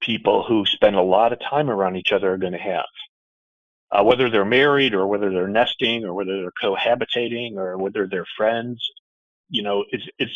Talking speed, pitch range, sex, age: 195 wpm, 95-140 Hz, male, 40-59